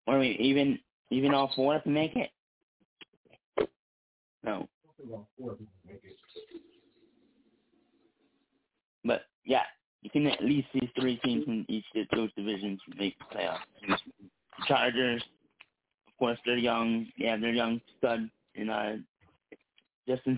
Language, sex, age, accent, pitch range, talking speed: English, male, 30-49, American, 110-135 Hz, 125 wpm